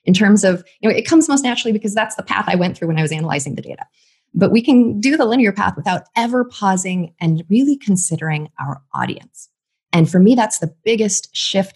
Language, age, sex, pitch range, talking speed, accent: English, 20-39, female, 165-225 Hz, 225 wpm, American